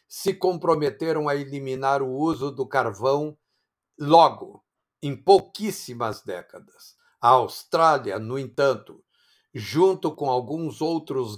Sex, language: male, Portuguese